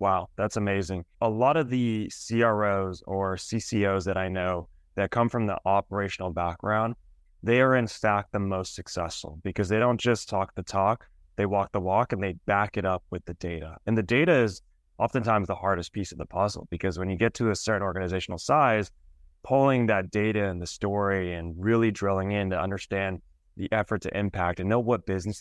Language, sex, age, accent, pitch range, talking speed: English, male, 20-39, American, 90-110 Hz, 200 wpm